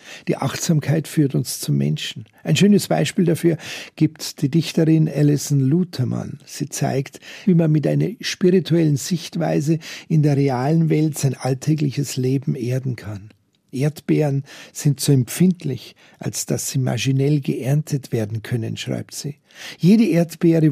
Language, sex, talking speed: German, male, 135 wpm